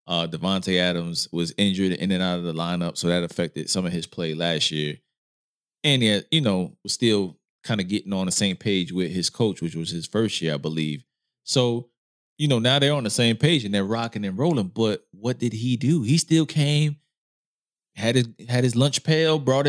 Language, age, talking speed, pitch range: English, 20-39, 220 wpm, 95-150 Hz